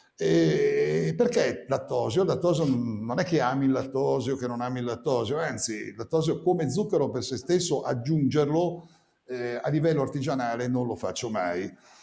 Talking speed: 150 wpm